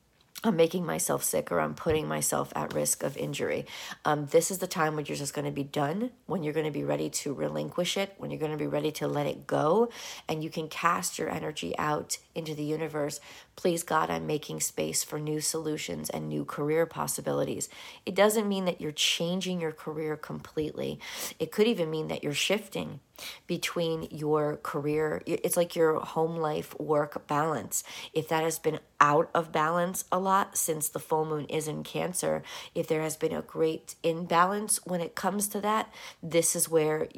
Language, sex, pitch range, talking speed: English, female, 145-170 Hz, 195 wpm